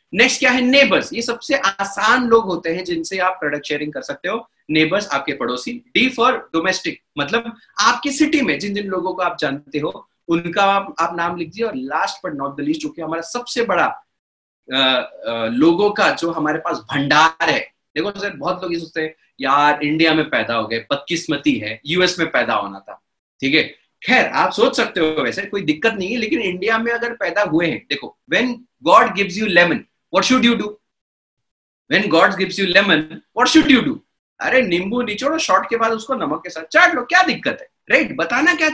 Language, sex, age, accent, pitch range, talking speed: Hindi, male, 30-49, native, 170-270 Hz, 200 wpm